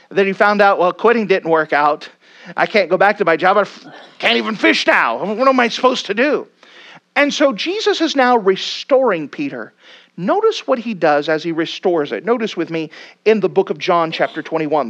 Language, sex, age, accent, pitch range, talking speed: English, male, 40-59, American, 165-255 Hz, 210 wpm